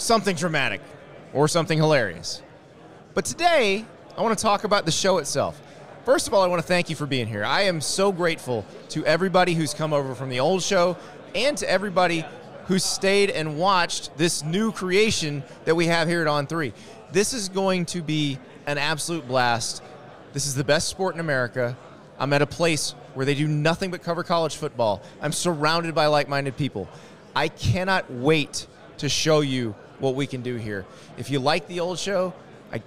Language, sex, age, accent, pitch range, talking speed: English, male, 20-39, American, 140-180 Hz, 190 wpm